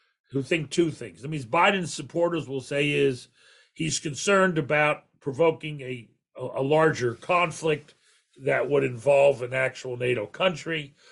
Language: English